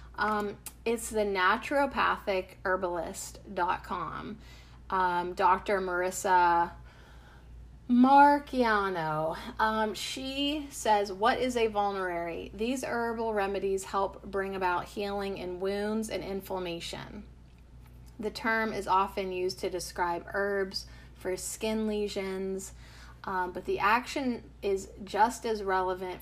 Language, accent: English, American